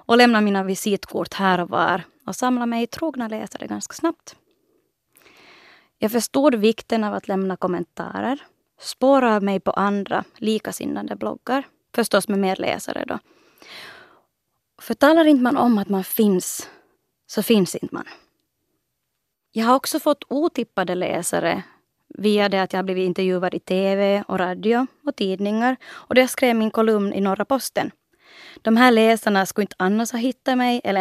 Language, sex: Swedish, female